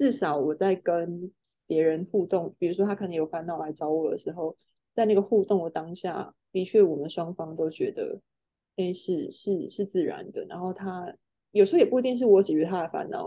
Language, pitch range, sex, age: Chinese, 175-250 Hz, female, 20-39